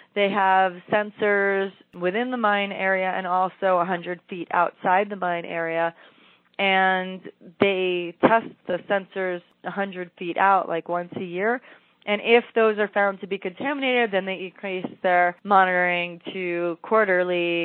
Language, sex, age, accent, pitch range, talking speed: English, female, 20-39, American, 180-215 Hz, 145 wpm